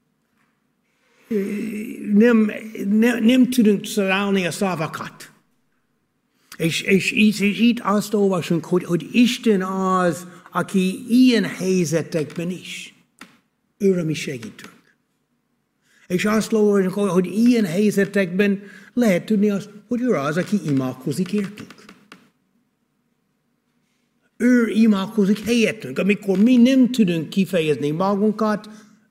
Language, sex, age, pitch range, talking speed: Hungarian, male, 60-79, 165-225 Hz, 95 wpm